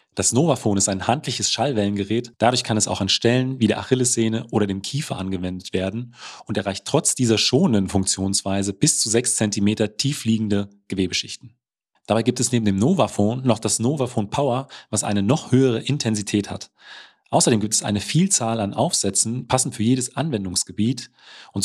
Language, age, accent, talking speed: German, 30-49, German, 170 wpm